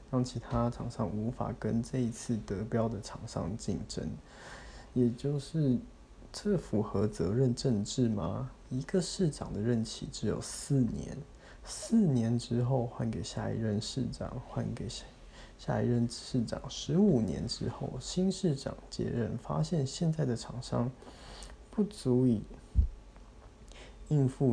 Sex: male